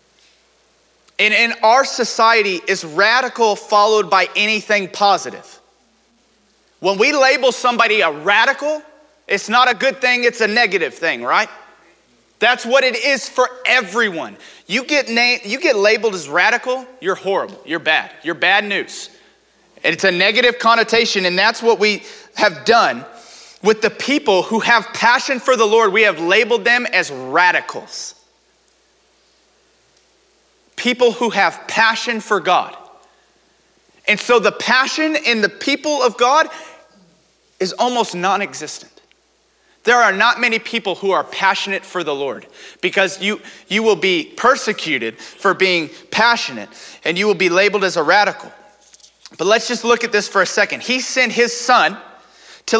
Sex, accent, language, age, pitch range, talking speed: male, American, English, 30-49, 200-260 Hz, 150 wpm